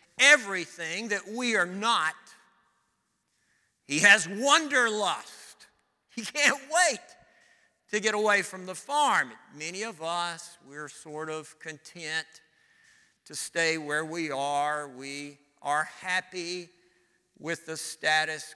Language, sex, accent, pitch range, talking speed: English, male, American, 145-210 Hz, 115 wpm